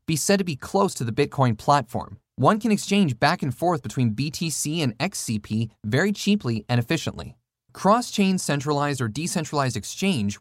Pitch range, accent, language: 120-185 Hz, American, English